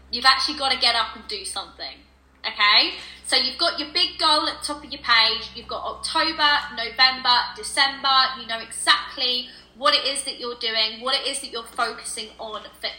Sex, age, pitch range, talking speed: female, 20-39, 210-265 Hz, 205 wpm